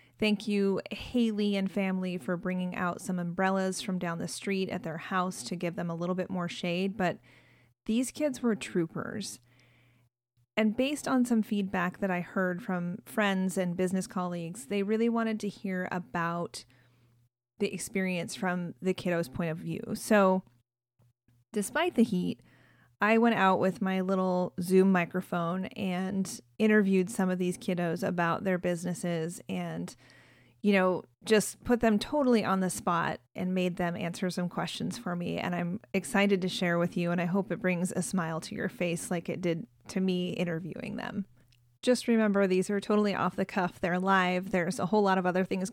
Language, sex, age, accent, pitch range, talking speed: English, female, 30-49, American, 175-200 Hz, 180 wpm